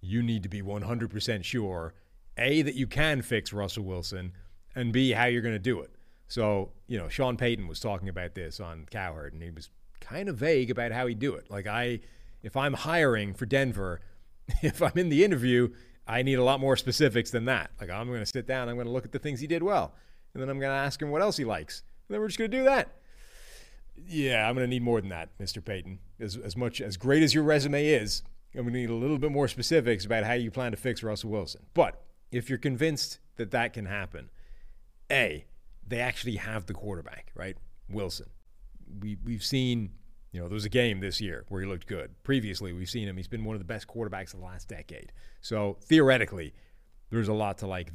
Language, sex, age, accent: English, male, 30-49, American